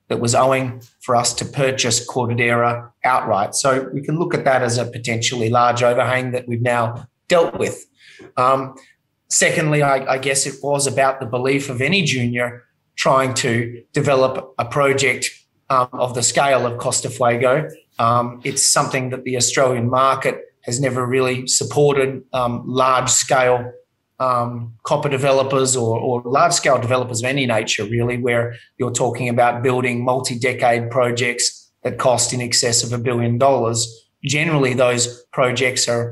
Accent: Australian